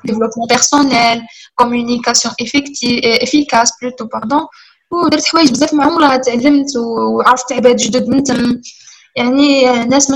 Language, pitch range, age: Arabic, 240-290 Hz, 10-29